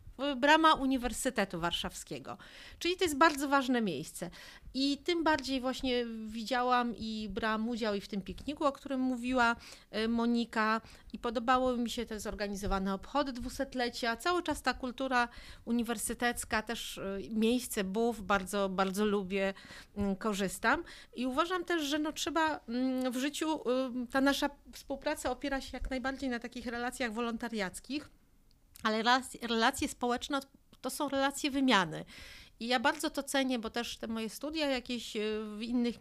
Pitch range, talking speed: 215-270 Hz, 140 wpm